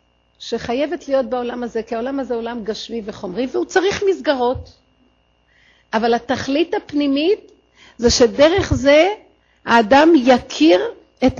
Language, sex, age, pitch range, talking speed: Hebrew, female, 50-69, 180-260 Hz, 120 wpm